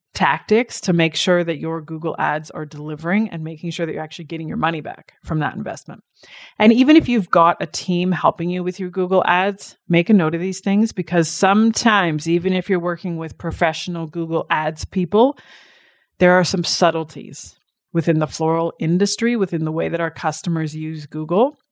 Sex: female